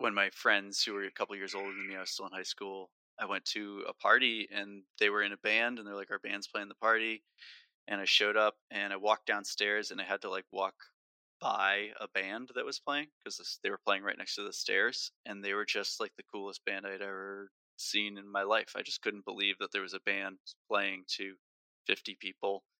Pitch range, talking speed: 95-110 Hz, 240 wpm